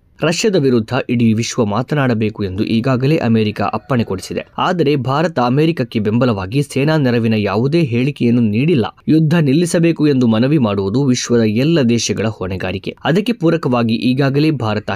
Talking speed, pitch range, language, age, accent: 130 wpm, 110-150 Hz, Kannada, 20-39, native